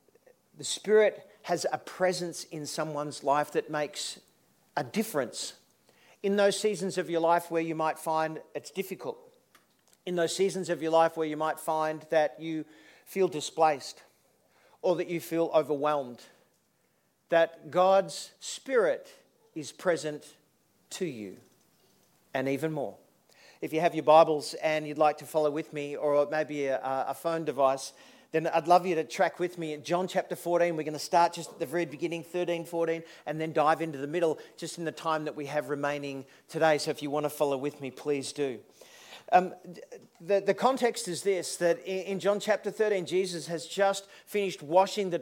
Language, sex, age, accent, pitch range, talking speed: English, male, 50-69, Australian, 155-190 Hz, 180 wpm